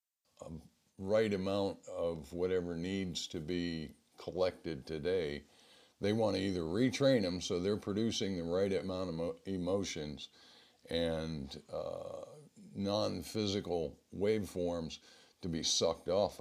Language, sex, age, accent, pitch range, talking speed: English, male, 50-69, American, 80-95 Hz, 115 wpm